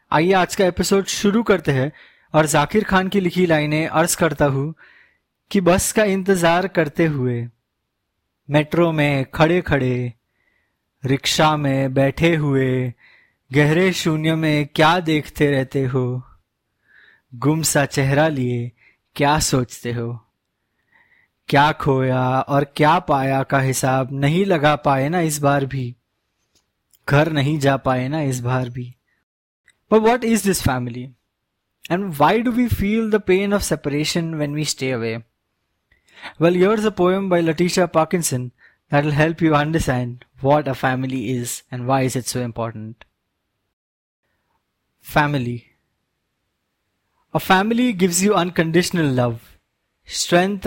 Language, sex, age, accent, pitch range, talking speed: English, male, 20-39, Indian, 125-170 Hz, 125 wpm